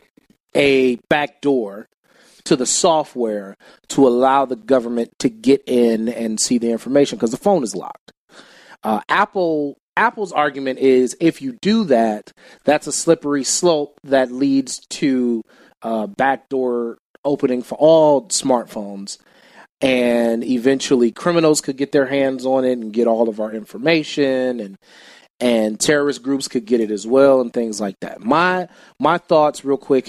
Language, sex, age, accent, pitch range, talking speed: English, male, 30-49, American, 115-145 Hz, 150 wpm